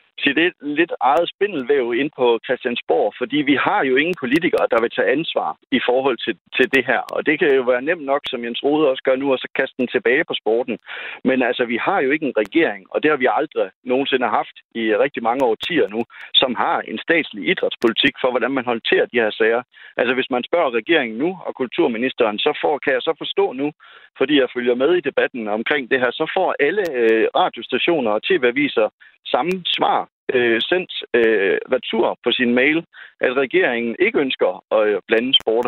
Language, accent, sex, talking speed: Danish, native, male, 205 wpm